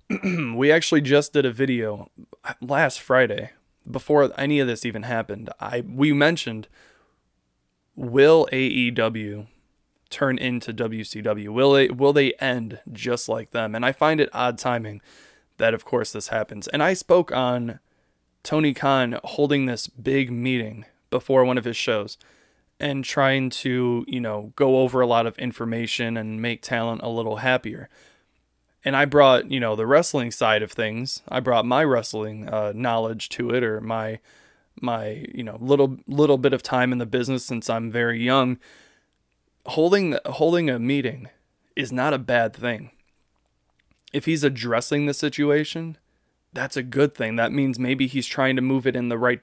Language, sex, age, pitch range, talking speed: English, male, 20-39, 115-135 Hz, 165 wpm